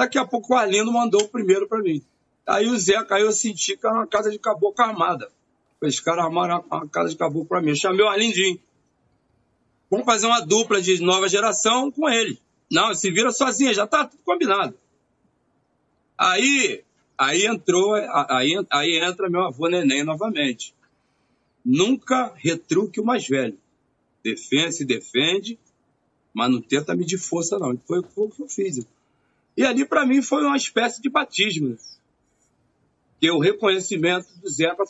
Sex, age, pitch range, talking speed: male, 40-59, 155-230 Hz, 170 wpm